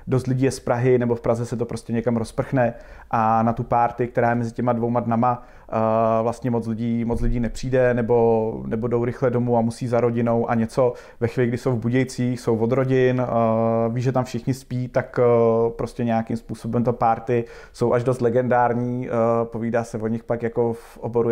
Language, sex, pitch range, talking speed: Slovak, male, 115-125 Hz, 200 wpm